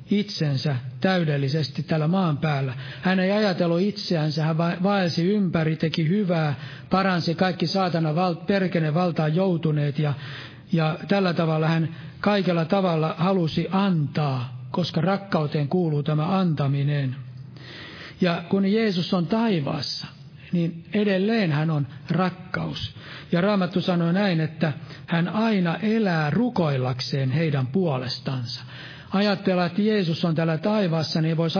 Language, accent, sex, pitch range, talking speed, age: Finnish, native, male, 150-185 Hz, 120 wpm, 60-79